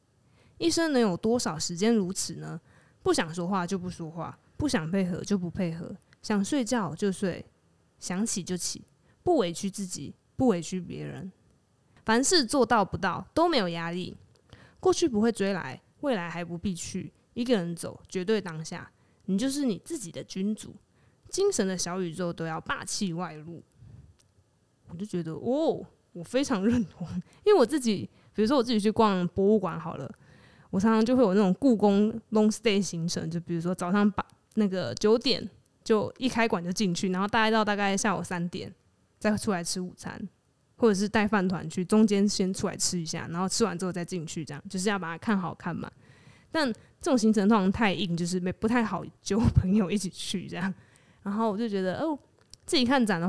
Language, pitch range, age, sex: Chinese, 175-220 Hz, 20-39, female